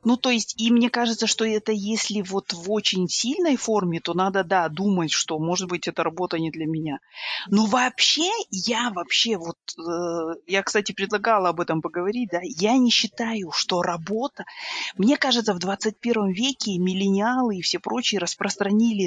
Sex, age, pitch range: female, 30-49, 175-235 Hz